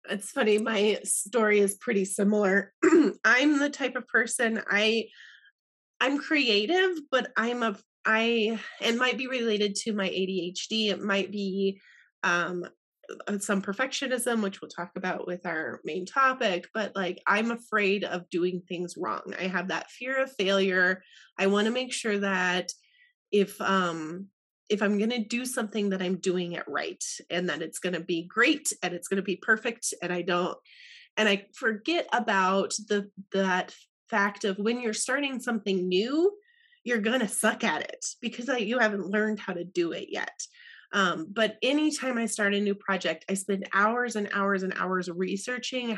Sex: female